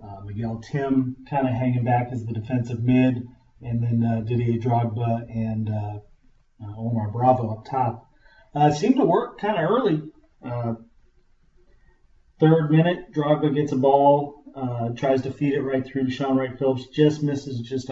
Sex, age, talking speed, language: male, 40-59, 165 wpm, English